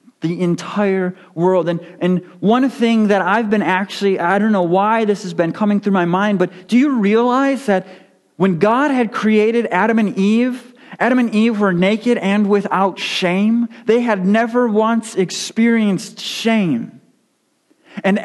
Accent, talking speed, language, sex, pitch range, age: American, 160 wpm, English, male, 190-260 Hz, 40-59